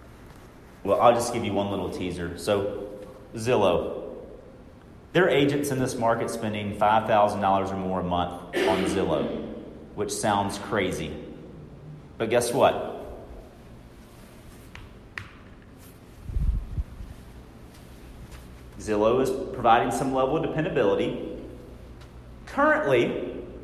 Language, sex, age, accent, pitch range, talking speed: English, male, 40-59, American, 90-140 Hz, 95 wpm